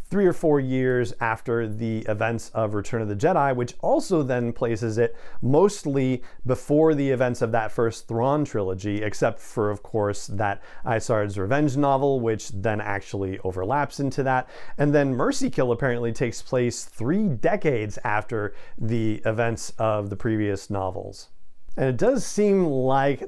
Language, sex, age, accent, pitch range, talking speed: English, male, 40-59, American, 110-140 Hz, 155 wpm